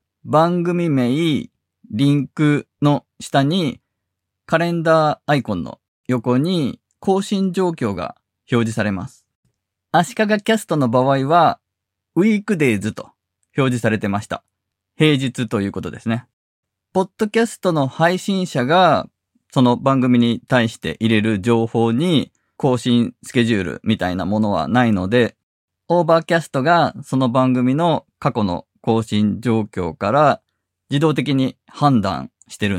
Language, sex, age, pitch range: Japanese, male, 20-39, 110-150 Hz